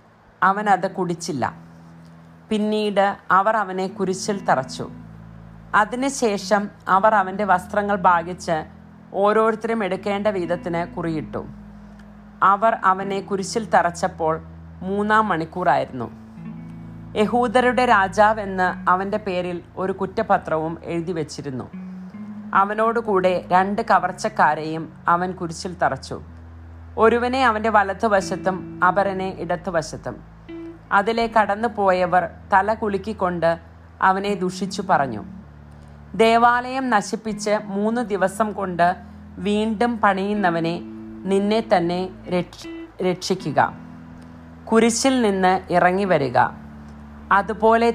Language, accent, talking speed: English, Indian, 85 wpm